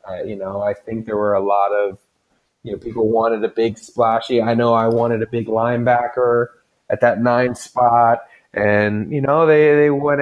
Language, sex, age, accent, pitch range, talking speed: English, male, 30-49, American, 110-125 Hz, 200 wpm